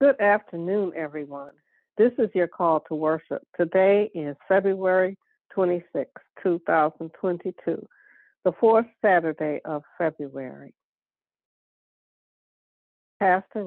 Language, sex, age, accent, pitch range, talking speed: English, female, 60-79, American, 160-200 Hz, 90 wpm